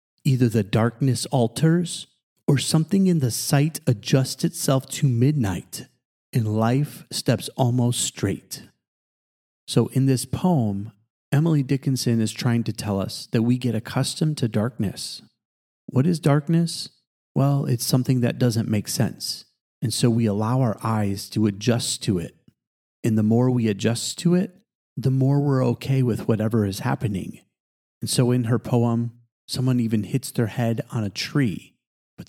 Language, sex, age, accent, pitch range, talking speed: English, male, 40-59, American, 115-140 Hz, 155 wpm